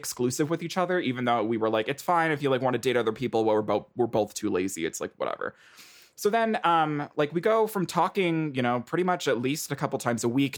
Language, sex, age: English, male, 20-39